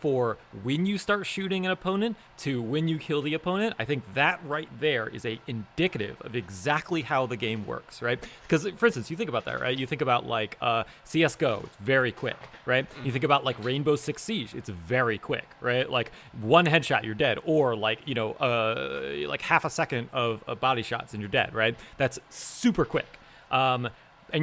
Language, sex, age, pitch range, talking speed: English, male, 30-49, 120-165 Hz, 205 wpm